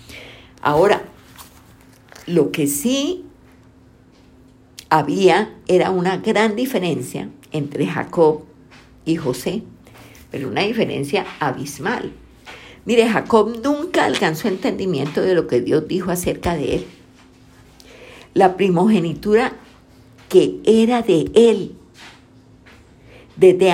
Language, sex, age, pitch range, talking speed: Spanish, female, 50-69, 140-220 Hz, 95 wpm